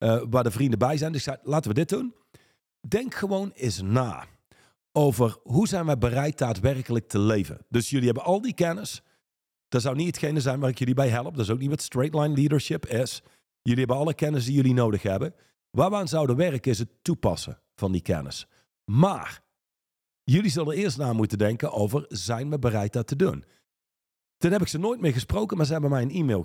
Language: Dutch